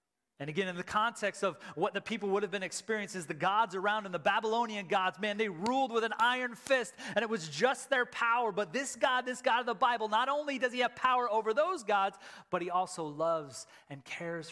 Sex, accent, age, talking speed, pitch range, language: male, American, 30-49, 230 wpm, 140-225 Hz, English